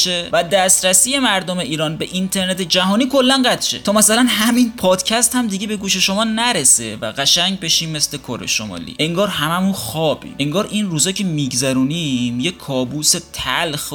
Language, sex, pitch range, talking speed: Persian, male, 150-210 Hz, 155 wpm